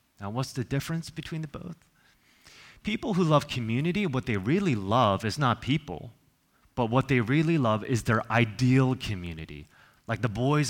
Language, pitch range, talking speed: English, 100-135 Hz, 170 wpm